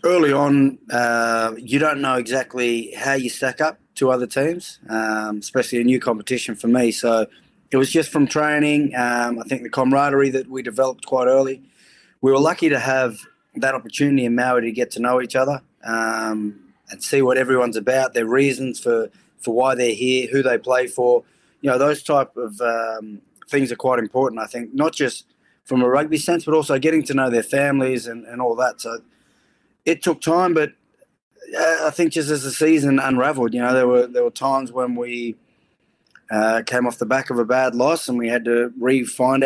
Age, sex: 20-39, male